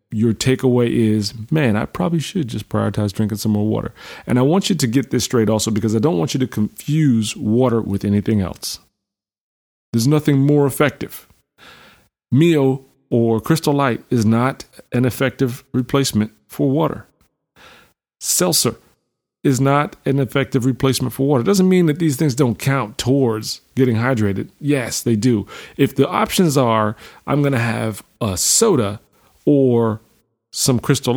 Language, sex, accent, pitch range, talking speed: English, male, American, 115-140 Hz, 160 wpm